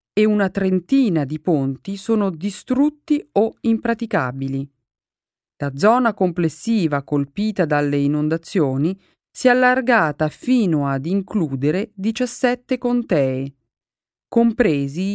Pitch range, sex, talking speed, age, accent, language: 150-220 Hz, female, 95 wpm, 40-59, native, Italian